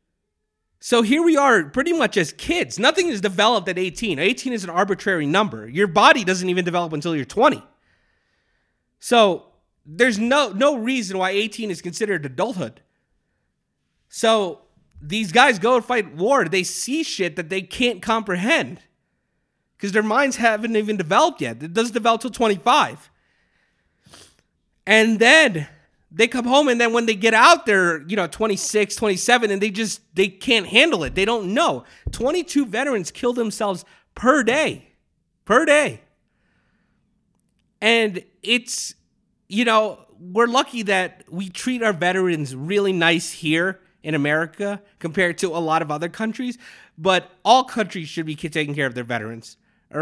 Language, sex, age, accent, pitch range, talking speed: English, male, 30-49, American, 180-235 Hz, 155 wpm